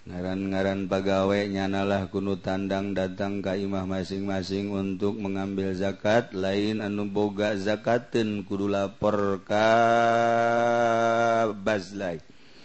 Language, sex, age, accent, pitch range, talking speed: Indonesian, male, 30-49, native, 95-100 Hz, 75 wpm